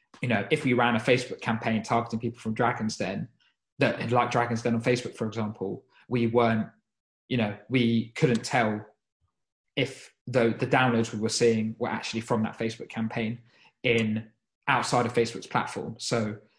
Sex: male